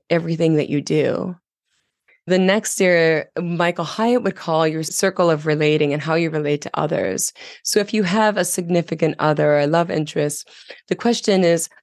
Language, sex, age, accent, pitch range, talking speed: English, female, 30-49, American, 150-185 Hz, 180 wpm